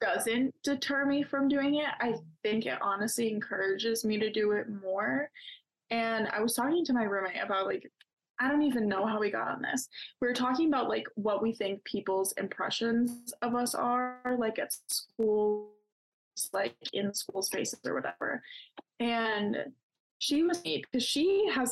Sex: female